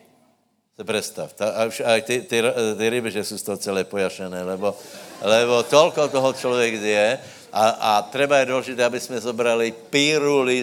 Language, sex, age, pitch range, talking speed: Slovak, male, 60-79, 100-120 Hz, 140 wpm